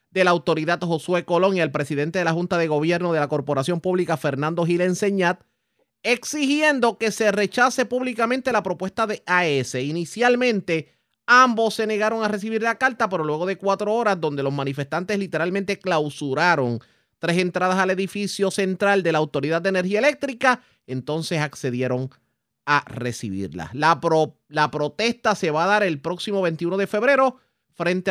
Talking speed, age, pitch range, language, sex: 160 wpm, 30-49, 145-205 Hz, Spanish, male